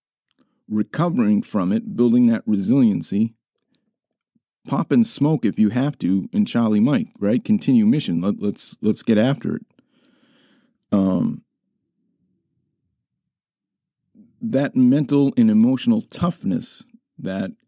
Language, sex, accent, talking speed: English, male, American, 110 wpm